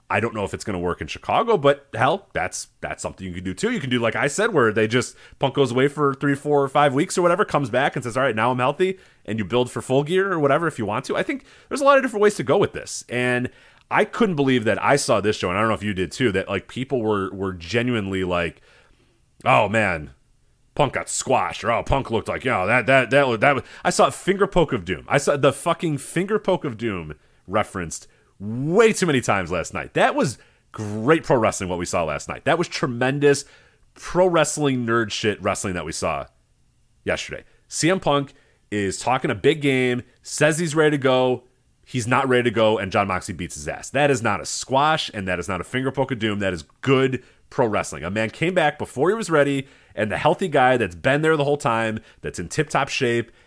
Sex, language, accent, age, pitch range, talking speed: male, English, American, 30-49, 105-145 Hz, 250 wpm